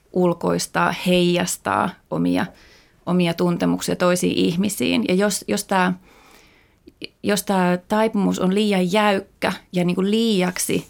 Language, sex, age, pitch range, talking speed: Finnish, female, 30-49, 170-195 Hz, 115 wpm